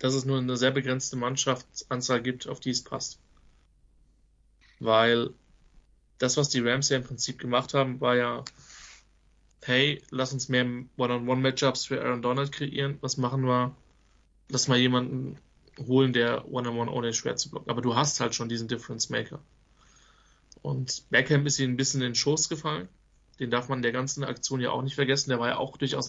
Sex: male